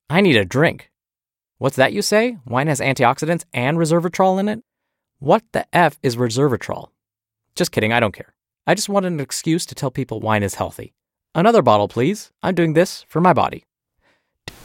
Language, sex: English, male